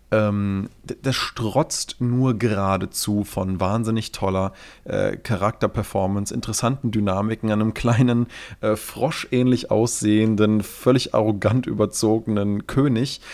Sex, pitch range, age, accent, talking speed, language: male, 95-120 Hz, 30-49, German, 100 wpm, German